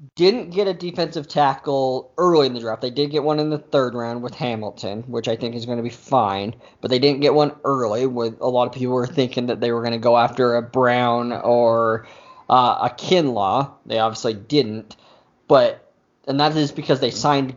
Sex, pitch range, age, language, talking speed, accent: male, 120-150 Hz, 20-39, English, 215 wpm, American